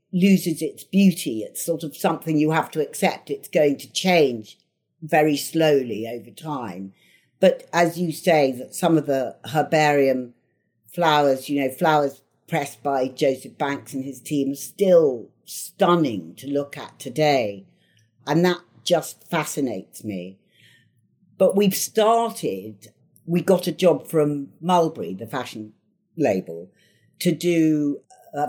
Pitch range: 125-165 Hz